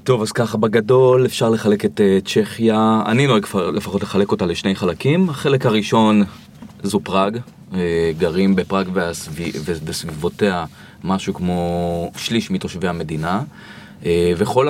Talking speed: 115 wpm